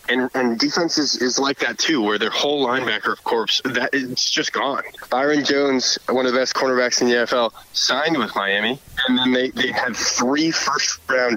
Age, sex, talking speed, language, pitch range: 20-39, male, 195 wpm, English, 115-150 Hz